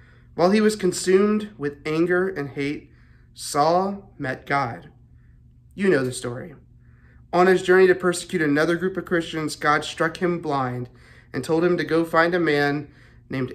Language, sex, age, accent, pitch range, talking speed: English, male, 30-49, American, 130-175 Hz, 165 wpm